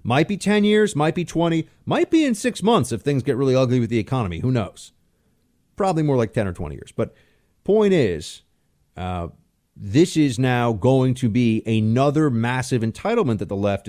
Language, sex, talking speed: English, male, 195 wpm